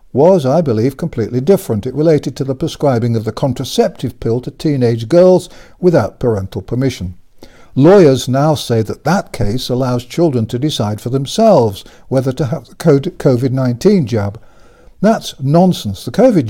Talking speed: 155 wpm